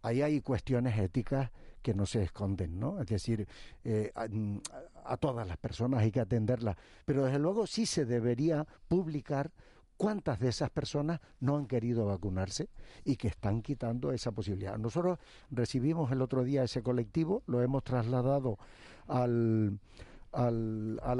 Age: 50-69